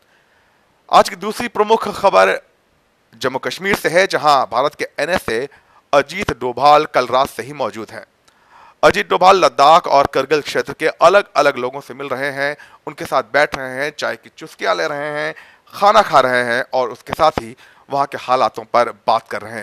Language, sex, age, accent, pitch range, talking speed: Hindi, male, 40-59, native, 130-170 Hz, 185 wpm